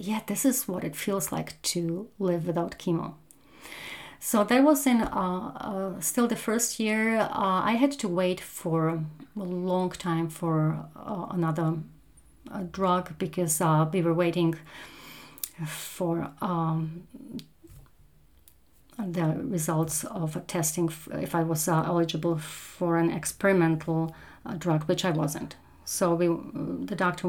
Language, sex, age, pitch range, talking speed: English, female, 30-49, 165-205 Hz, 140 wpm